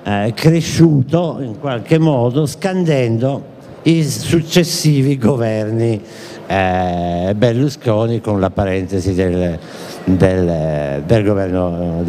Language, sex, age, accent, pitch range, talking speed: Italian, male, 50-69, native, 115-160 Hz, 85 wpm